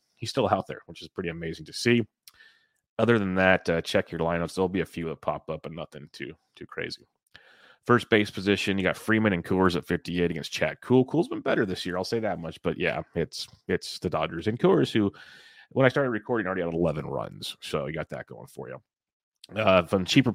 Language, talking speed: English, 235 wpm